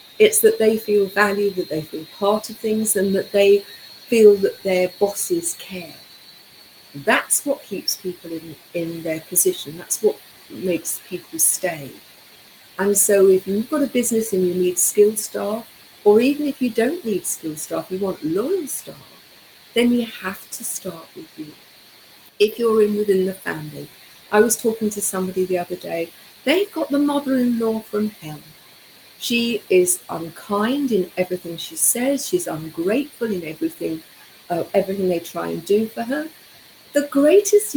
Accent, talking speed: British, 165 wpm